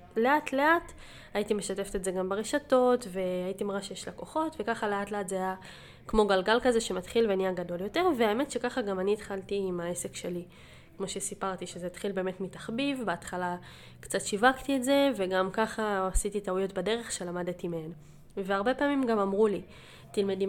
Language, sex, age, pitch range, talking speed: Hebrew, female, 20-39, 185-235 Hz, 165 wpm